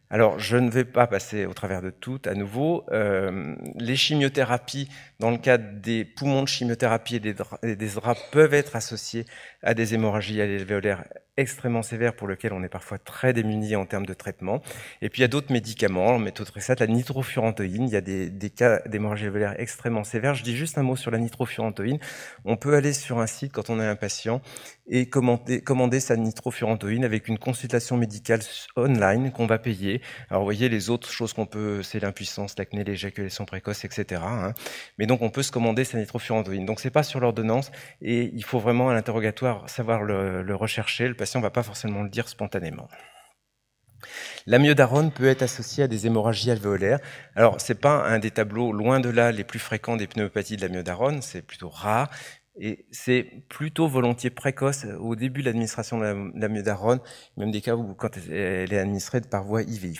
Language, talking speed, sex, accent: French, 205 wpm, male, French